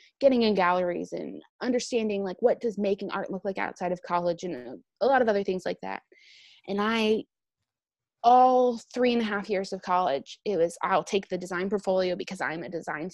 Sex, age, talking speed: female, 20-39, 200 wpm